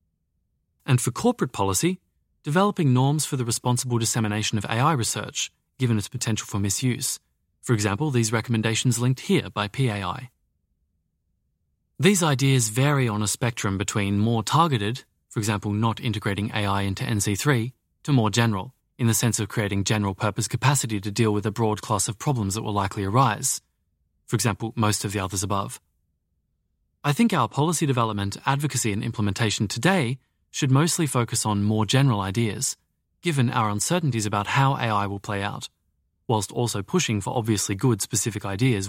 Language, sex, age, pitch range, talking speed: English, male, 30-49, 100-130 Hz, 160 wpm